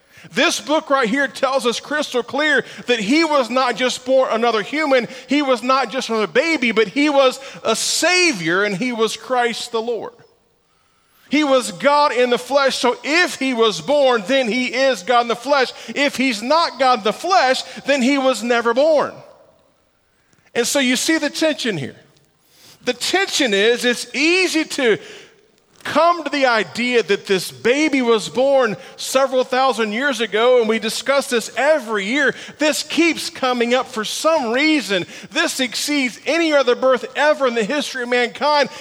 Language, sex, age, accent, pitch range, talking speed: English, male, 40-59, American, 235-290 Hz, 175 wpm